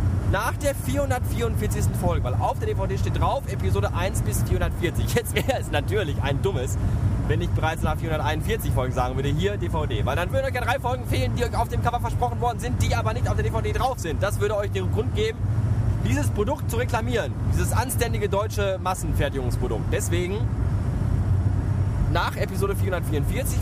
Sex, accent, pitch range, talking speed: male, German, 100-110 Hz, 180 wpm